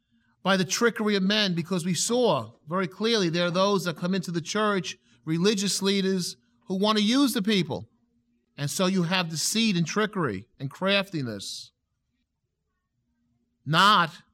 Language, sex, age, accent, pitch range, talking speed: English, male, 40-59, American, 170-230 Hz, 150 wpm